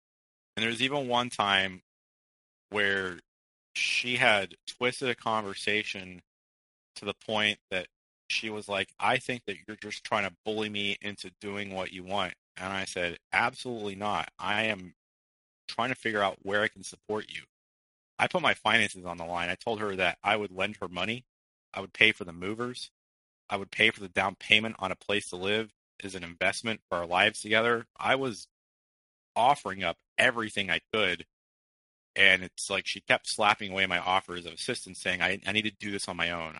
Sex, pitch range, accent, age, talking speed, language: male, 90-105 Hz, American, 30-49, 195 wpm, English